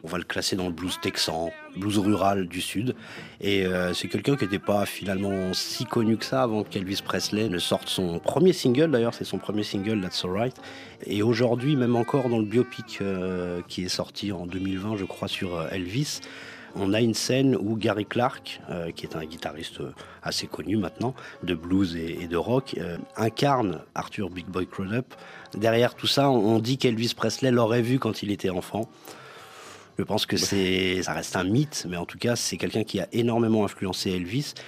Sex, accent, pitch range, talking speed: male, French, 95-115 Hz, 200 wpm